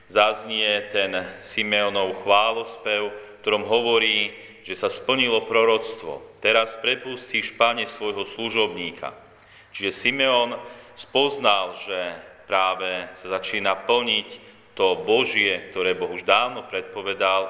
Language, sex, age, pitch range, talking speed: Slovak, male, 40-59, 95-120 Hz, 105 wpm